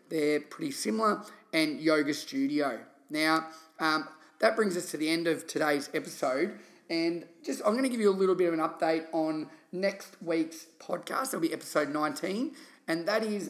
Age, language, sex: 30-49, English, male